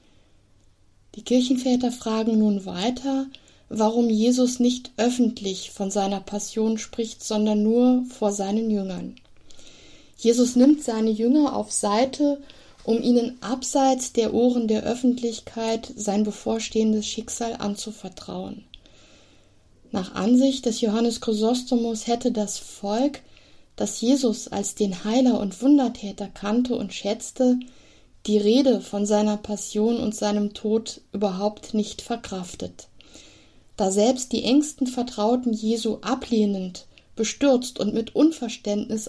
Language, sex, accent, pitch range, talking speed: German, female, German, 210-245 Hz, 115 wpm